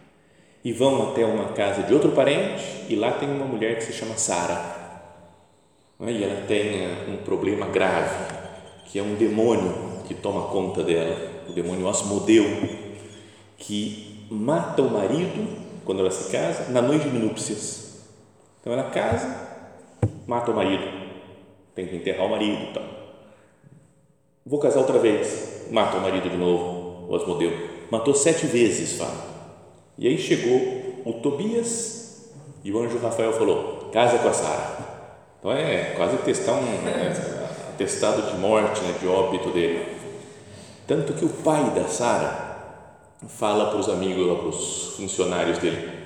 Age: 40-59